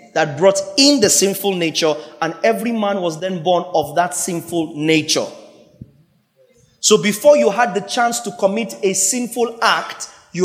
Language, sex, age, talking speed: English, male, 30-49, 160 wpm